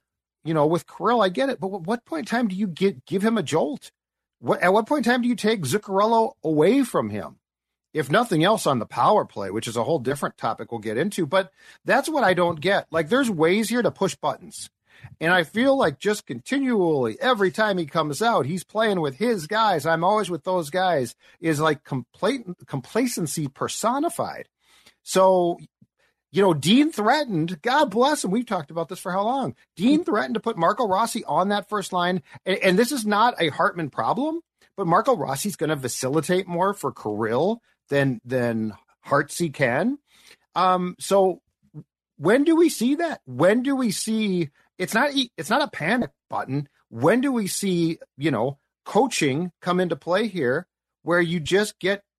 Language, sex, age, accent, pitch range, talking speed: English, male, 50-69, American, 160-225 Hz, 190 wpm